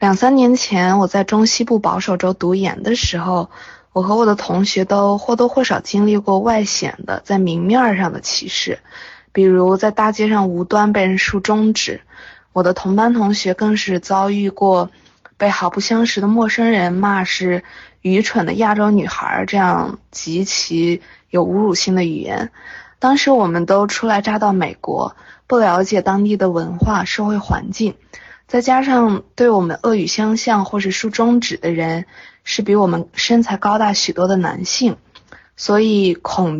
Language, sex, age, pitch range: Chinese, female, 20-39, 185-225 Hz